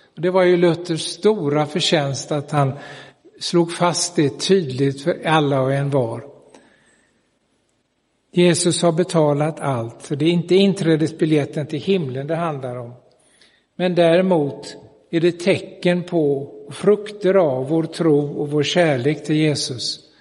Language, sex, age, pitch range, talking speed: Swedish, male, 60-79, 145-180 Hz, 135 wpm